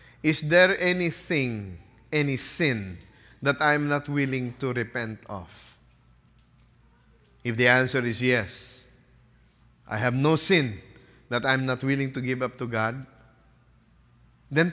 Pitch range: 100-130 Hz